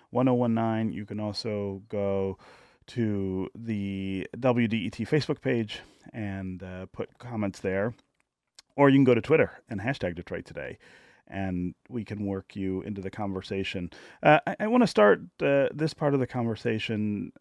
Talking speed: 165 wpm